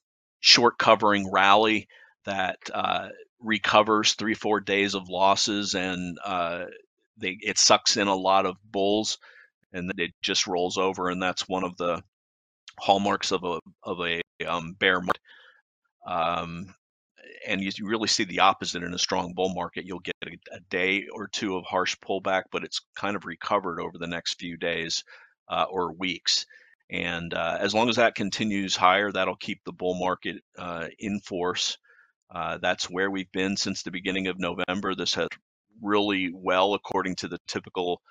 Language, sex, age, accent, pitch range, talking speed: English, male, 40-59, American, 90-100 Hz, 170 wpm